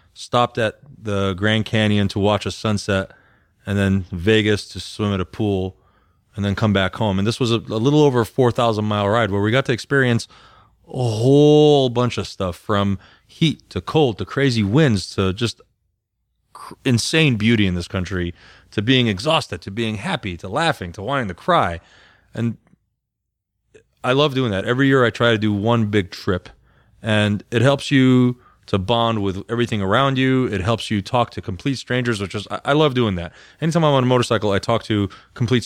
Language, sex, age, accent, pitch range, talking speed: English, male, 30-49, American, 100-125 Hz, 195 wpm